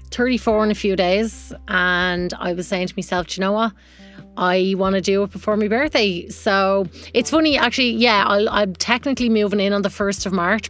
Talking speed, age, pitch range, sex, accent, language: 215 wpm, 30-49, 190-215 Hz, female, Irish, English